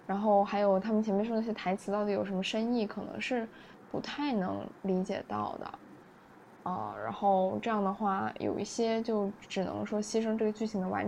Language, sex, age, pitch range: Chinese, female, 10-29, 195-220 Hz